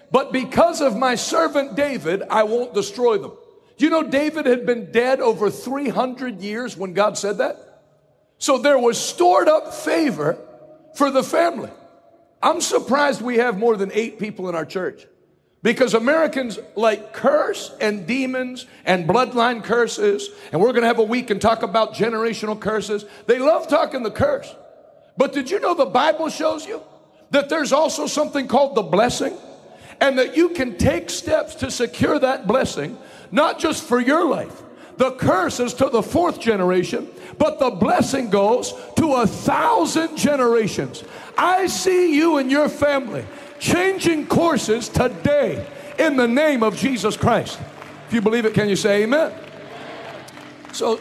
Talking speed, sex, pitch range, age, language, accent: 165 wpm, male, 220-300 Hz, 60-79, English, American